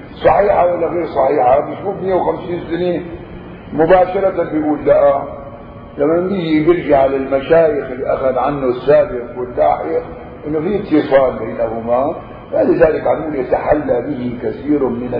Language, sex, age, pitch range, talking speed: Arabic, male, 50-69, 130-175 Hz, 115 wpm